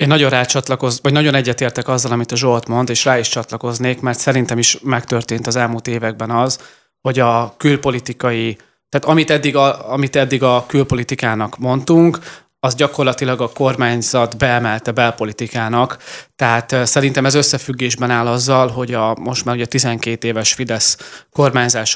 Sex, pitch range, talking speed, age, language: male, 115-140 Hz, 150 wpm, 30-49, Hungarian